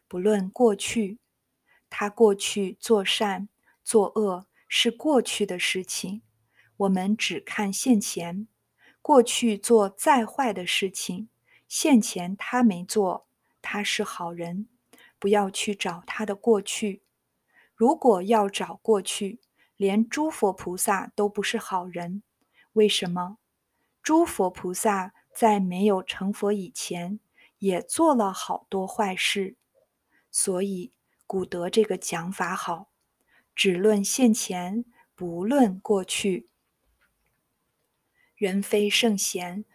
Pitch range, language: 185-225 Hz, Chinese